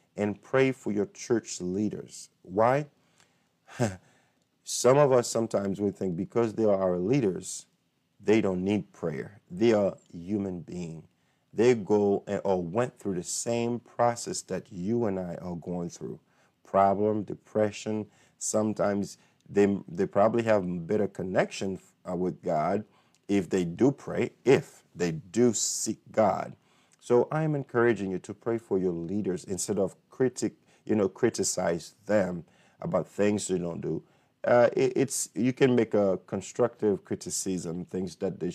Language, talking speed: English, 150 wpm